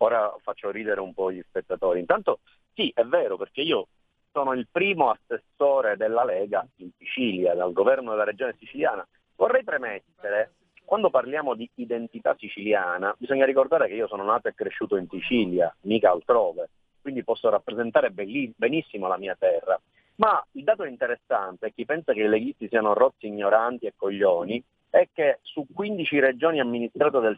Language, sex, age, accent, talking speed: Italian, male, 40-59, native, 160 wpm